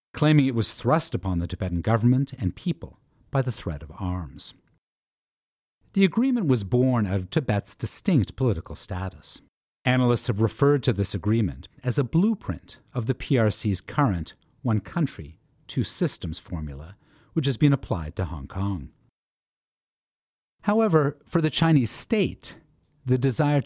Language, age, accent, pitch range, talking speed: English, 50-69, American, 95-140 Hz, 145 wpm